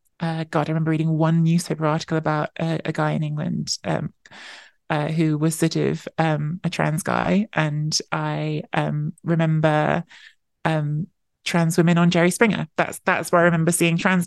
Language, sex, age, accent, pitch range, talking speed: English, male, 30-49, British, 160-180 Hz, 170 wpm